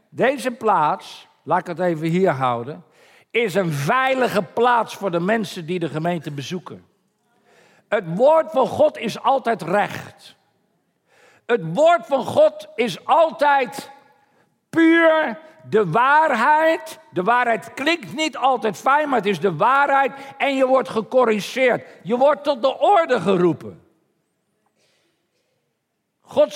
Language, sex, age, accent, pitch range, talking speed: Dutch, male, 50-69, Dutch, 215-300 Hz, 130 wpm